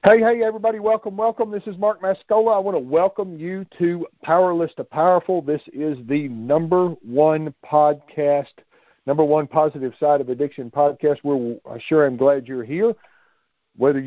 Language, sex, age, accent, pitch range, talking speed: English, male, 50-69, American, 120-155 Hz, 160 wpm